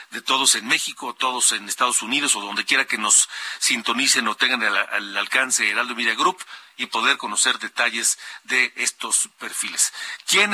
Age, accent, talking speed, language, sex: 40-59, Mexican, 170 wpm, Spanish, male